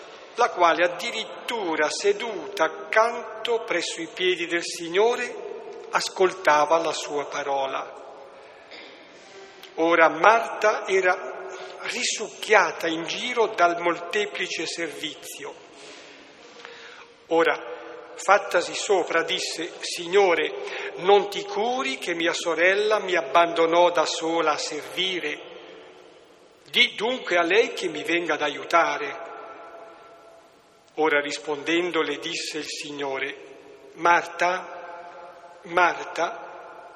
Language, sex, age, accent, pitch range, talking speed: Italian, male, 50-69, native, 165-240 Hz, 90 wpm